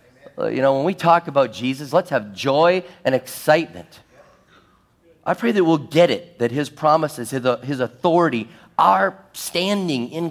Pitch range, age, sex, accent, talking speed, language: 95-135 Hz, 40-59, male, American, 150 wpm, English